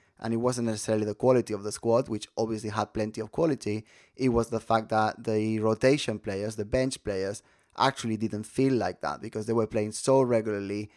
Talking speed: 200 wpm